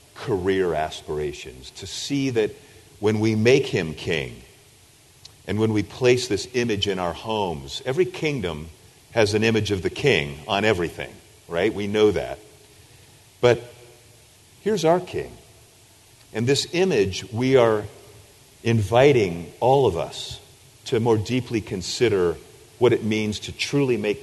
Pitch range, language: 100-125 Hz, English